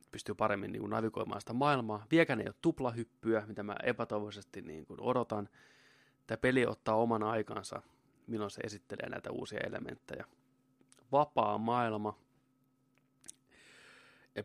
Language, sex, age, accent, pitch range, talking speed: Finnish, male, 30-49, native, 110-130 Hz, 130 wpm